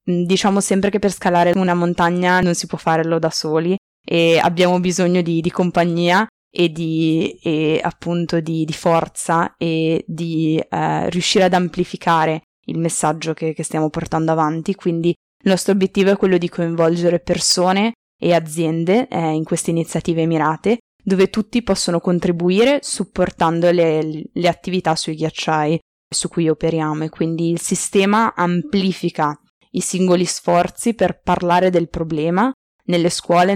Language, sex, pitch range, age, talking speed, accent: Italian, female, 165-185 Hz, 20-39, 145 wpm, native